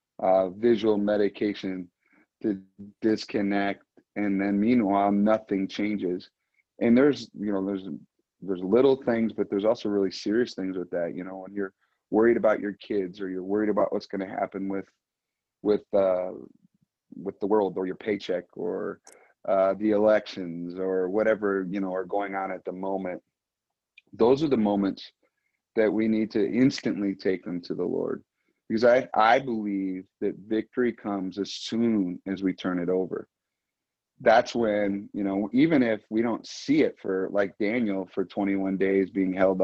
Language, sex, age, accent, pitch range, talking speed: English, male, 30-49, American, 95-110 Hz, 170 wpm